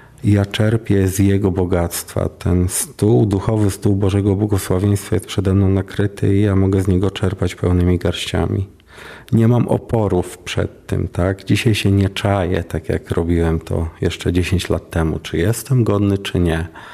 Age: 40-59